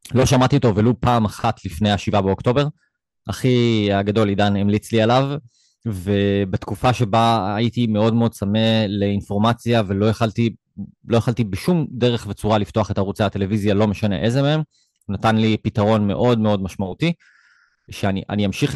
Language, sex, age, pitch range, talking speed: Hebrew, male, 20-39, 105-130 Hz, 145 wpm